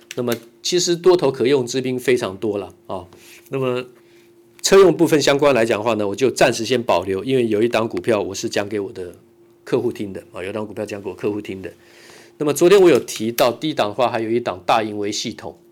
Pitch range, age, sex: 115-140 Hz, 50-69, male